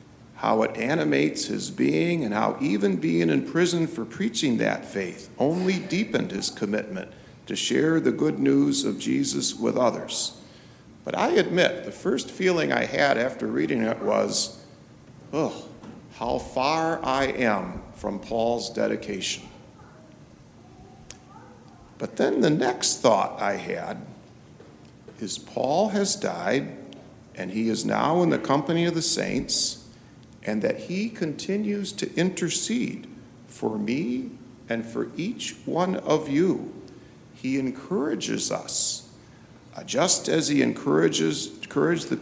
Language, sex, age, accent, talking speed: English, male, 50-69, American, 130 wpm